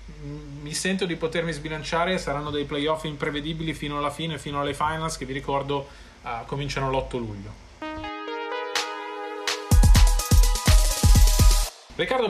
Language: Italian